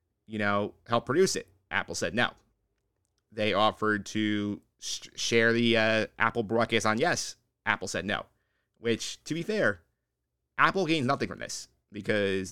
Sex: male